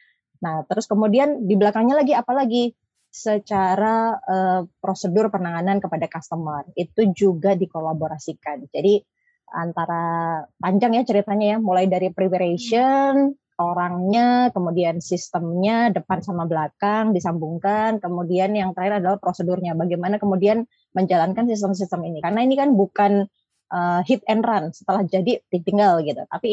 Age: 20-39